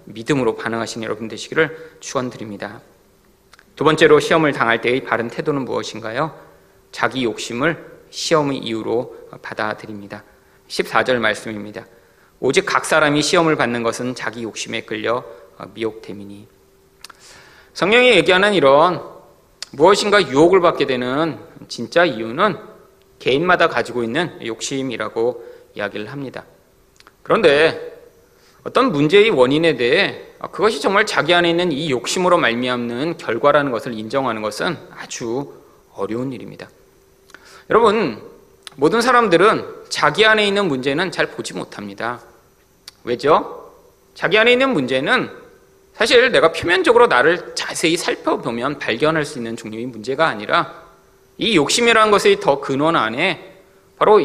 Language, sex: Korean, male